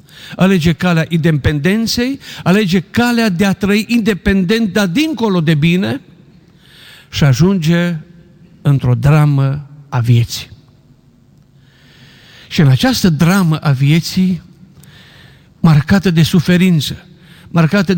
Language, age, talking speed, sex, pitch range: Romanian, 50-69, 95 wpm, male, 140-180 Hz